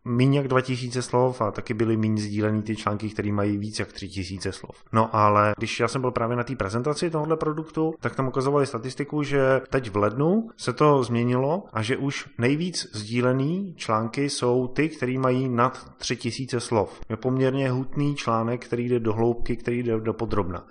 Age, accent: 20-39, native